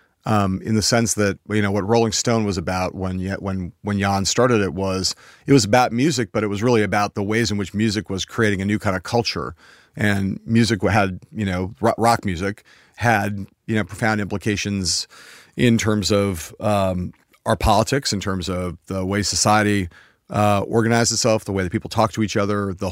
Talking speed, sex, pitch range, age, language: 200 wpm, male, 95-115 Hz, 40-59, English